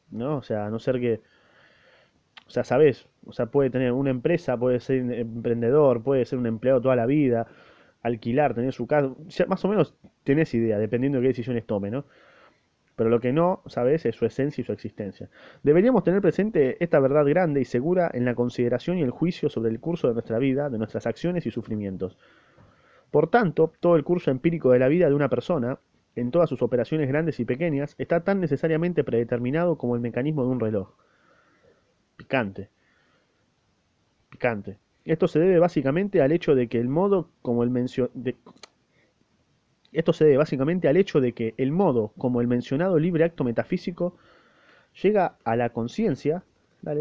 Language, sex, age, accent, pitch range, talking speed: Spanish, male, 20-39, Argentinian, 120-160 Hz, 160 wpm